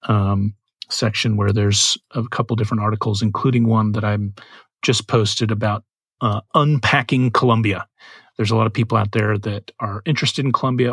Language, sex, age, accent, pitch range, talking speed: English, male, 30-49, American, 110-125 Hz, 165 wpm